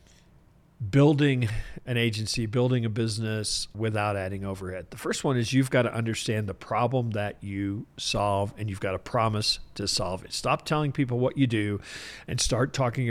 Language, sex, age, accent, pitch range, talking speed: English, male, 50-69, American, 105-130 Hz, 170 wpm